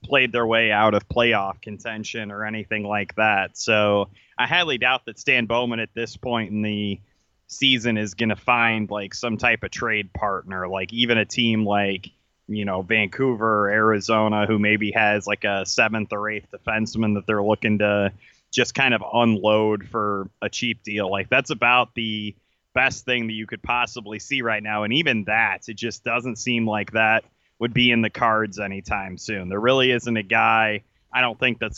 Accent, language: American, English